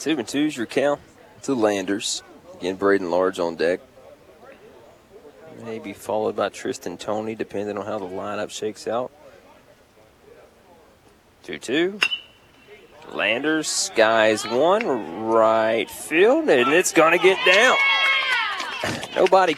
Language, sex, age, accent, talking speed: English, male, 30-49, American, 110 wpm